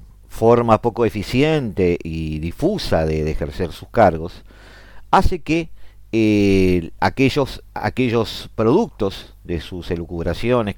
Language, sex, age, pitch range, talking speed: Spanish, male, 50-69, 90-125 Hz, 105 wpm